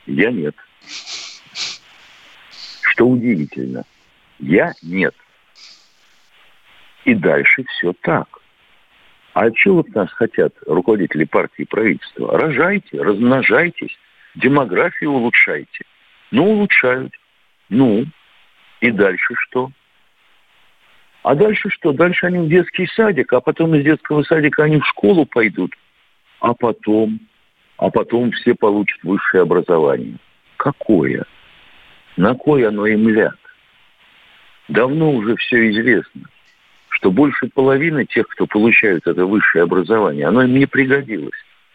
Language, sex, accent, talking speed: Russian, male, native, 110 wpm